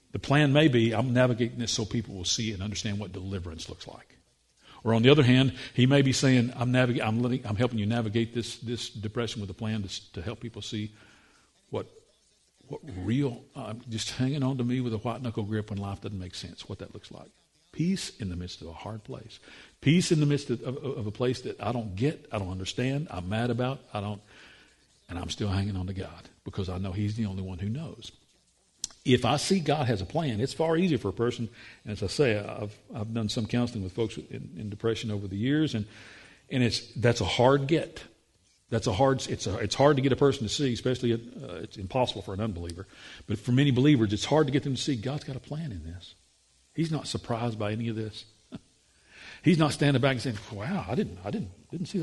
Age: 50-69